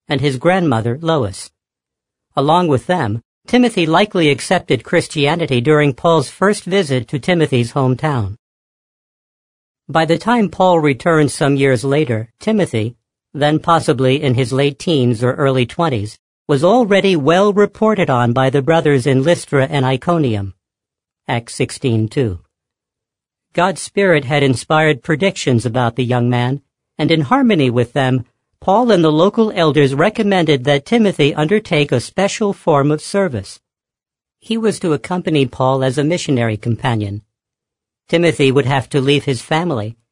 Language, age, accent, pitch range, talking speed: English, 50-69, American, 130-170 Hz, 140 wpm